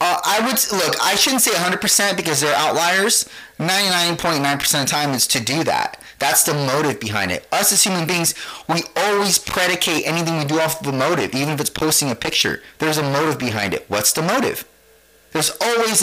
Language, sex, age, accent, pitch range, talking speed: English, male, 30-49, American, 135-170 Hz, 220 wpm